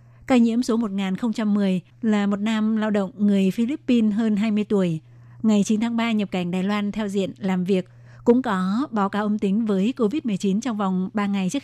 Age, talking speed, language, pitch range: 20-39, 200 wpm, Vietnamese, 190-225 Hz